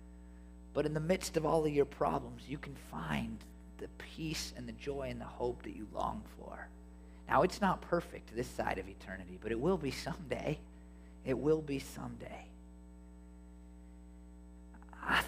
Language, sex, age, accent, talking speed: English, male, 40-59, American, 165 wpm